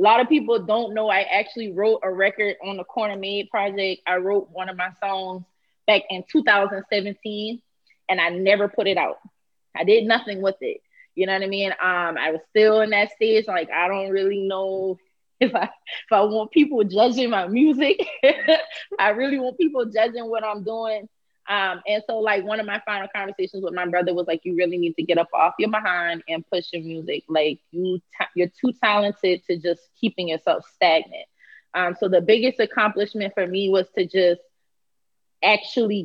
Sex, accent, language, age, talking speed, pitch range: female, American, English, 20-39, 195 wpm, 185-215 Hz